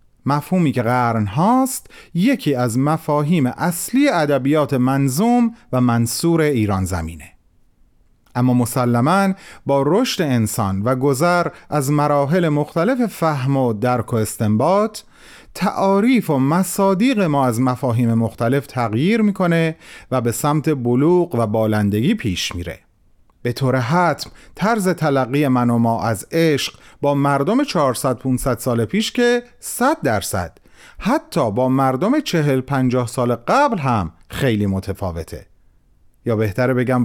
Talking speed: 125 wpm